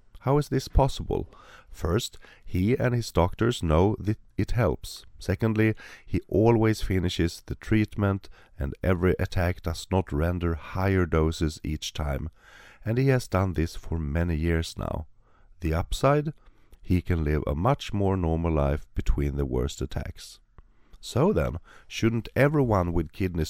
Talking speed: 150 wpm